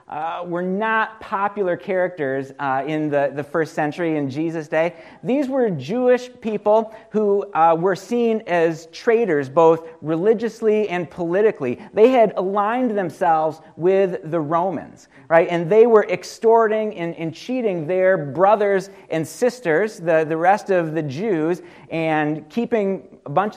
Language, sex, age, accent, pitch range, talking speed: English, male, 40-59, American, 165-215 Hz, 145 wpm